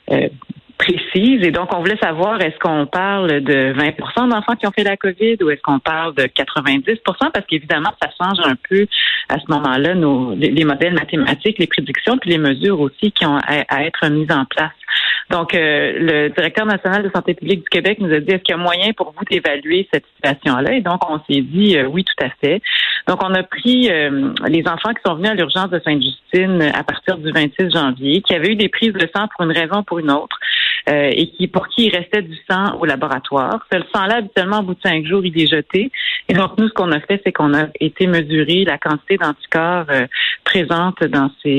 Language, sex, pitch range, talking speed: French, female, 155-195 Hz, 230 wpm